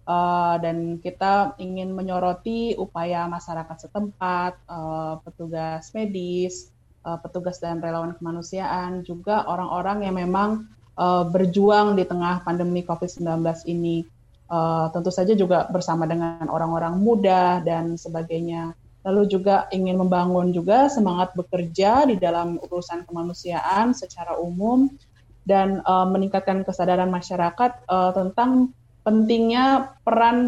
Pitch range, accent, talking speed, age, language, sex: 175-215 Hz, native, 115 wpm, 20-39, Indonesian, female